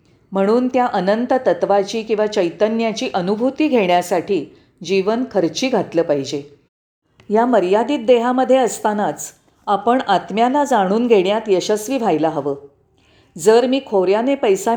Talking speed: 110 wpm